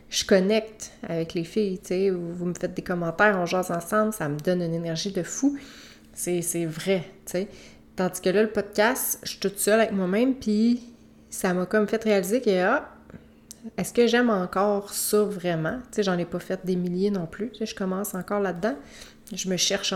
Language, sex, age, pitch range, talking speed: French, female, 30-49, 180-215 Hz, 205 wpm